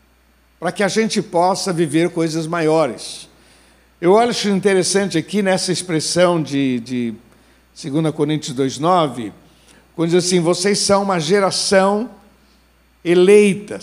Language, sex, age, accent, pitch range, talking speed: Portuguese, male, 60-79, Brazilian, 160-235 Hz, 115 wpm